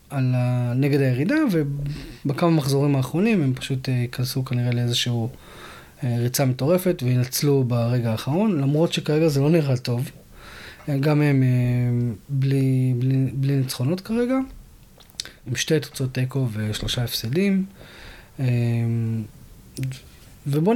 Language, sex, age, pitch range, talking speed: Hebrew, male, 20-39, 125-160 Hz, 105 wpm